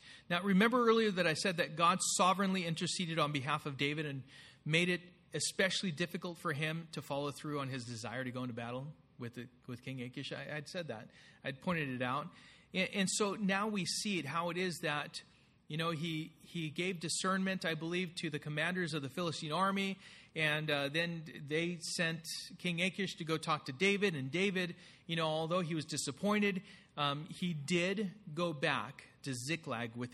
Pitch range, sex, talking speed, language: 140-195 Hz, male, 195 wpm, English